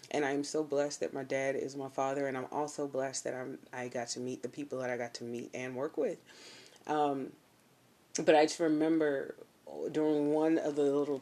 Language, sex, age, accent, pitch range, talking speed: English, female, 20-39, American, 130-165 Hz, 220 wpm